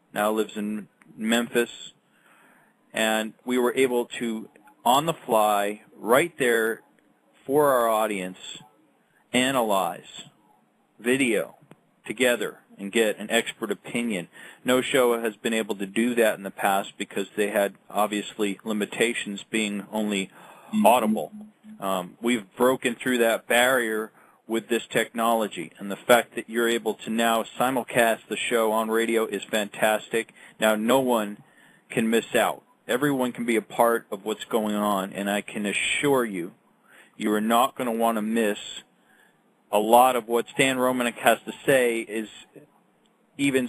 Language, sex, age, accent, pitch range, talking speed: English, male, 40-59, American, 105-120 Hz, 145 wpm